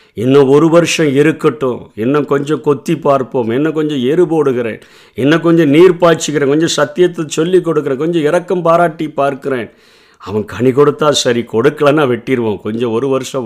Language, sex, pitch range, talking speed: Tamil, male, 115-155 Hz, 145 wpm